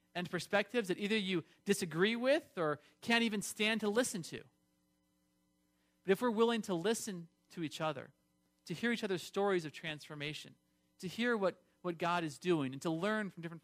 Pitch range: 145-205 Hz